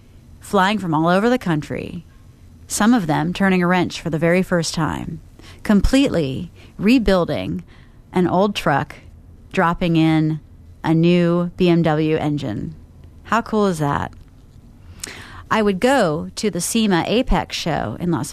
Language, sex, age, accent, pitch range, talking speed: English, female, 30-49, American, 145-185 Hz, 140 wpm